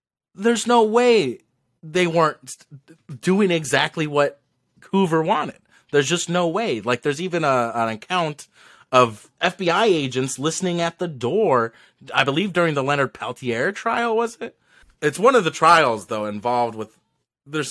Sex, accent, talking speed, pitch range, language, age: male, American, 155 wpm, 125-175 Hz, English, 30-49